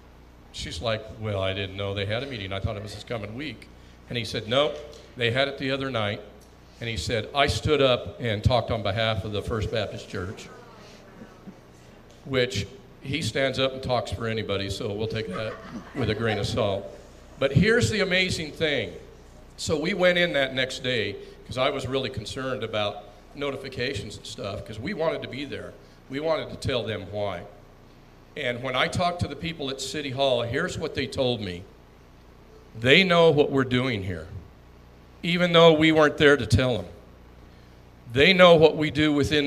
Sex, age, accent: male, 50-69, American